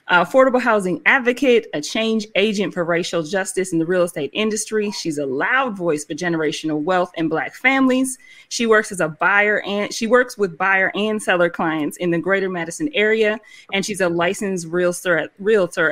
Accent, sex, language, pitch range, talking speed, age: American, female, English, 170-210 Hz, 180 wpm, 30-49